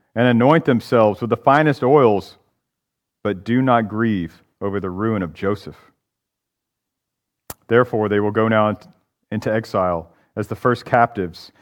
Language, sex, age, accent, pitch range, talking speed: English, male, 40-59, American, 105-145 Hz, 140 wpm